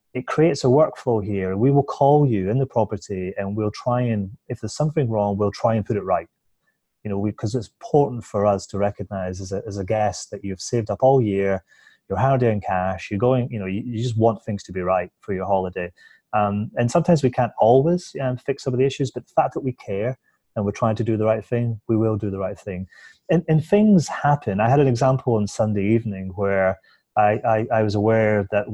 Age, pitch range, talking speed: 30-49, 100-115 Hz, 240 wpm